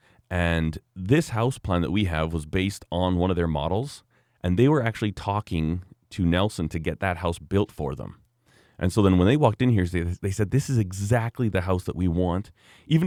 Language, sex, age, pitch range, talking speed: English, male, 30-49, 90-115 Hz, 220 wpm